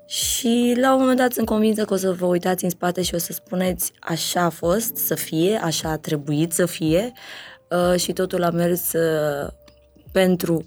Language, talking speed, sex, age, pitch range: Romanian, 185 wpm, female, 20-39, 165-205 Hz